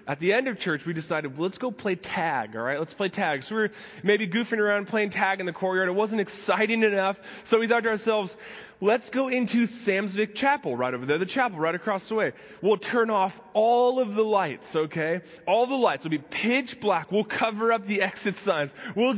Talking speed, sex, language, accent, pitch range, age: 230 wpm, male, English, American, 175-230 Hz, 20-39